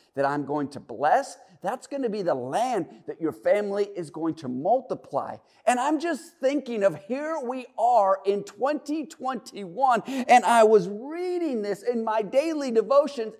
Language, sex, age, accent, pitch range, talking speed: English, male, 40-59, American, 230-300 Hz, 165 wpm